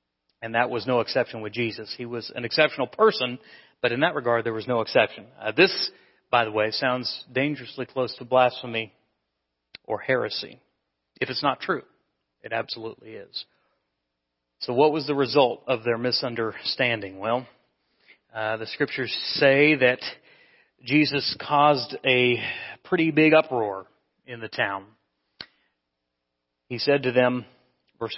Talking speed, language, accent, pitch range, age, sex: 145 wpm, English, American, 110-155 Hz, 40-59, male